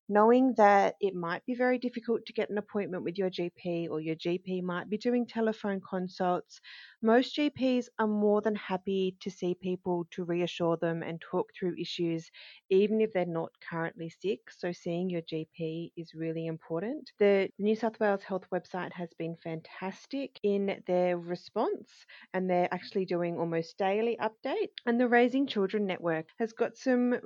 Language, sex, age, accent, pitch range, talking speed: English, female, 30-49, Australian, 175-230 Hz, 170 wpm